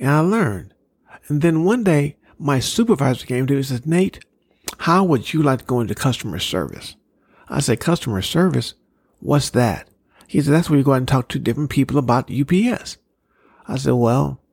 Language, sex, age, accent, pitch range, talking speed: English, male, 50-69, American, 120-150 Hz, 195 wpm